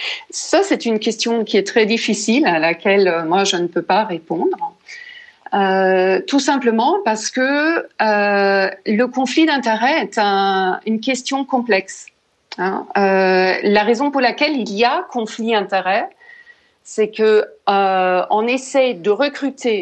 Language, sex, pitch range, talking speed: French, female, 195-265 Hz, 145 wpm